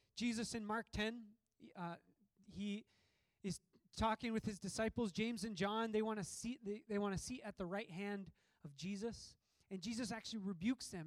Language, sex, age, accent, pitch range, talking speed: English, male, 20-39, American, 175-225 Hz, 175 wpm